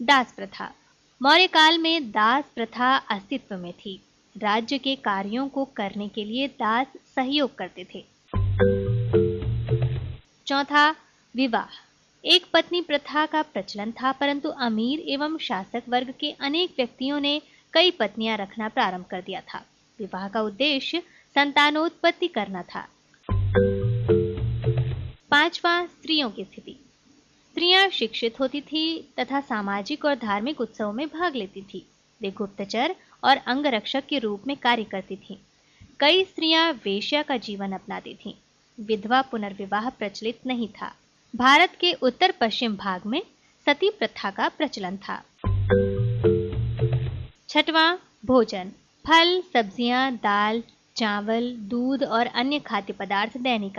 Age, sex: 20-39, female